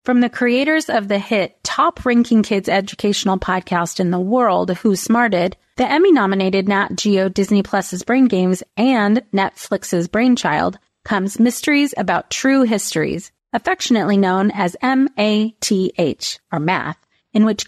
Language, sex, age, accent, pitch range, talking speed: English, female, 30-49, American, 190-245 Hz, 130 wpm